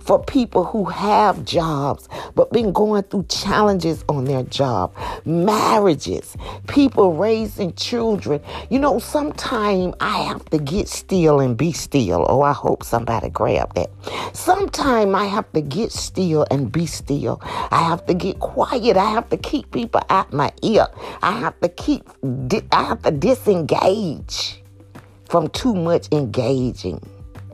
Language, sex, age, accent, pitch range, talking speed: English, female, 50-69, American, 145-240 Hz, 150 wpm